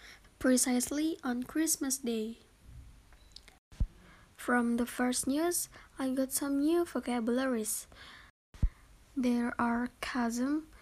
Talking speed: 90 wpm